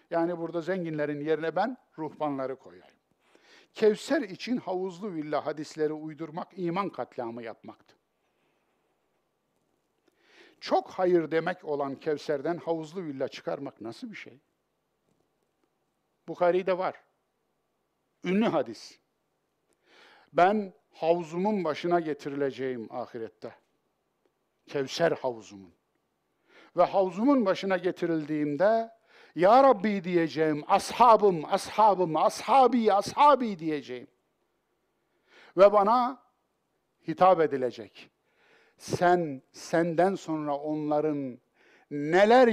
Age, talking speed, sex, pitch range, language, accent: 60-79, 85 wpm, male, 150-210 Hz, Turkish, native